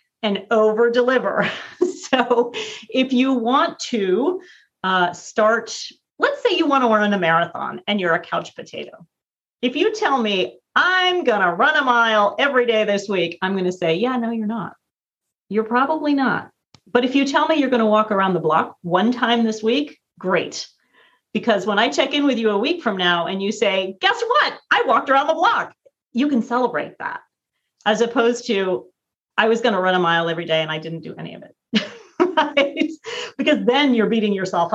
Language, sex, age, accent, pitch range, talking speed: English, female, 40-59, American, 180-260 Hz, 195 wpm